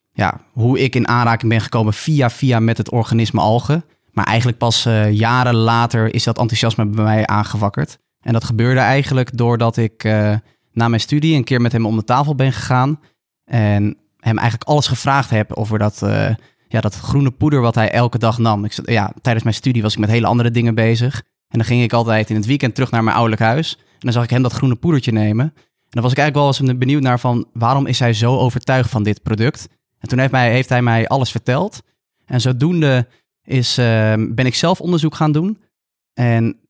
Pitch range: 115-135 Hz